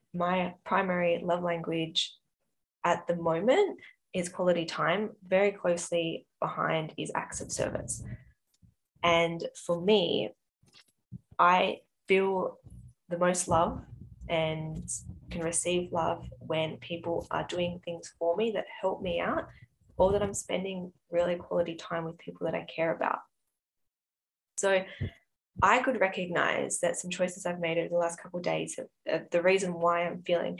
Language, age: English, 10-29